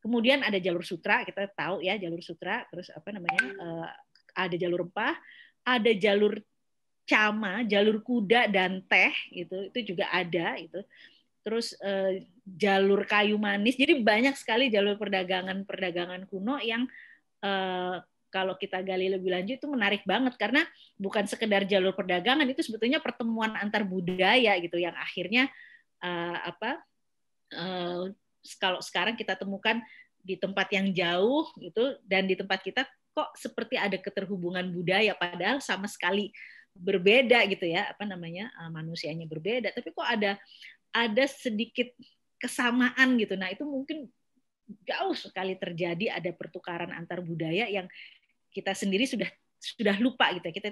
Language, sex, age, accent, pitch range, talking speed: Indonesian, female, 30-49, native, 185-235 Hz, 135 wpm